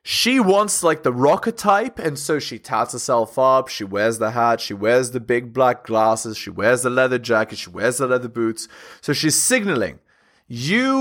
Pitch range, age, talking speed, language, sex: 120-175 Hz, 30-49, 195 wpm, English, male